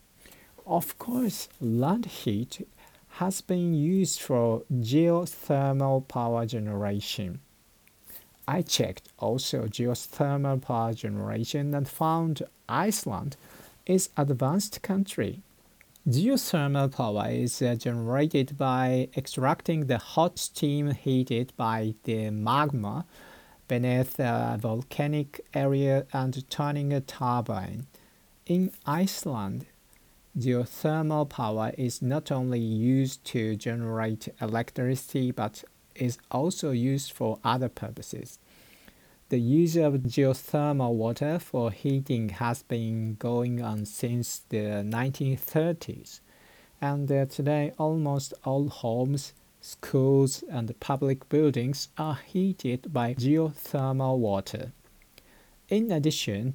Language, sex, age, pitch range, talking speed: English, male, 50-69, 120-150 Hz, 100 wpm